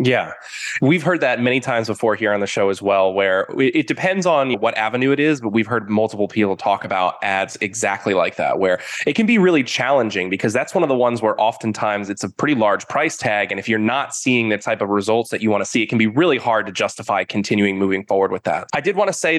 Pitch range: 110-135 Hz